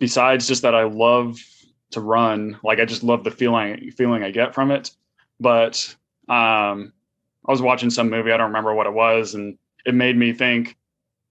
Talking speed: 190 wpm